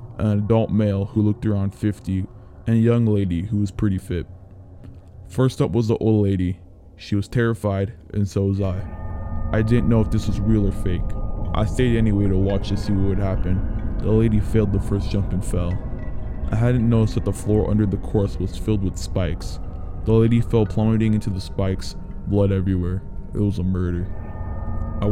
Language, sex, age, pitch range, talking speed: English, male, 20-39, 95-110 Hz, 195 wpm